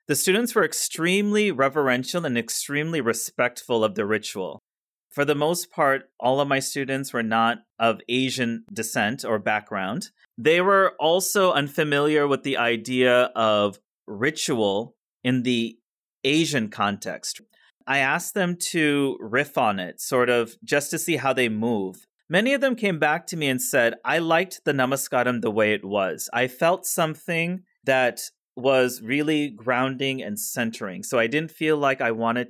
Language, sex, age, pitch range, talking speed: English, male, 30-49, 120-155 Hz, 160 wpm